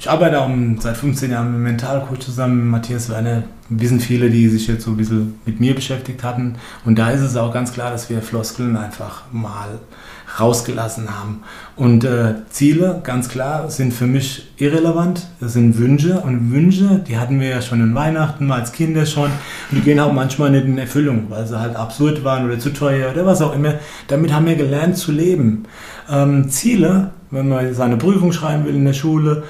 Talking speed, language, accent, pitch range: 205 wpm, German, German, 115-150 Hz